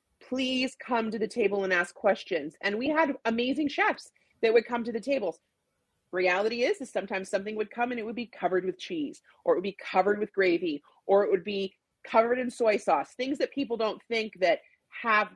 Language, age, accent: English, 30-49, American